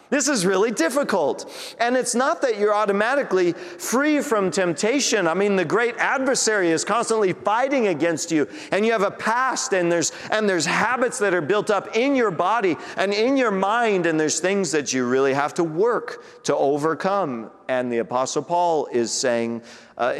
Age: 40-59